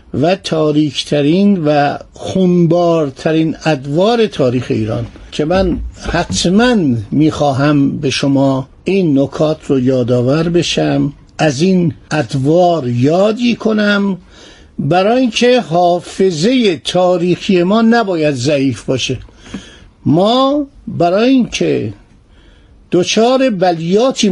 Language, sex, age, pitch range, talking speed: Persian, male, 50-69, 135-185 Hz, 90 wpm